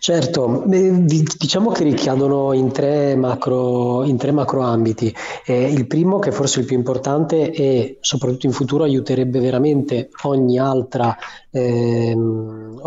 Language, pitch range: Italian, 120-140 Hz